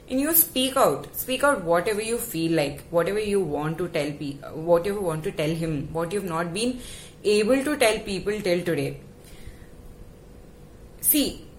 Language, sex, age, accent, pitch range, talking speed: English, female, 20-39, Indian, 175-255 Hz, 175 wpm